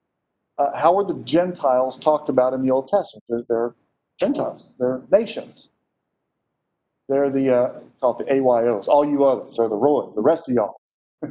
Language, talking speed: English, 170 wpm